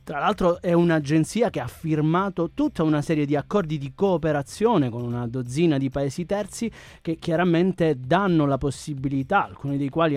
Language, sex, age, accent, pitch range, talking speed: Italian, male, 30-49, native, 140-180 Hz, 165 wpm